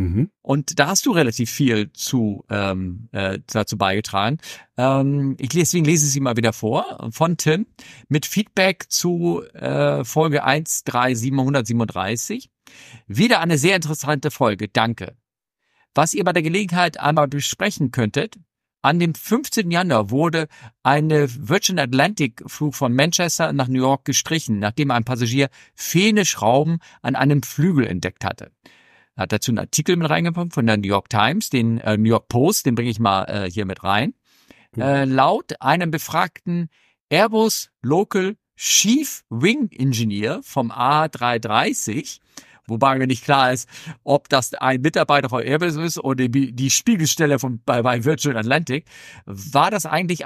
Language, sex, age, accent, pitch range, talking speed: German, male, 50-69, German, 120-160 Hz, 150 wpm